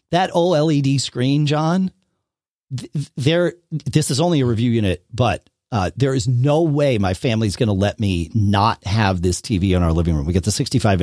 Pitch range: 95-145 Hz